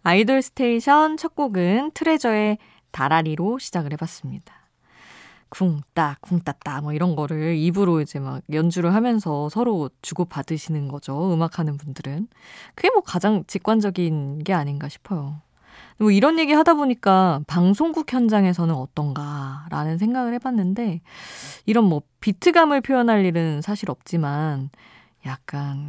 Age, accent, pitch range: 20-39, native, 150-210 Hz